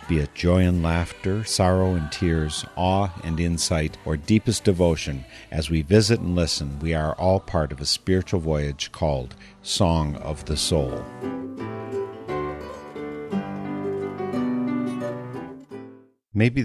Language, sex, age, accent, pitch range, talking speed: English, male, 50-69, American, 80-100 Hz, 120 wpm